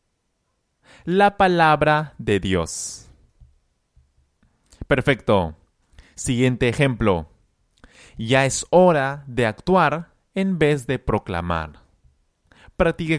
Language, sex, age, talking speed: Spanish, male, 30-49, 75 wpm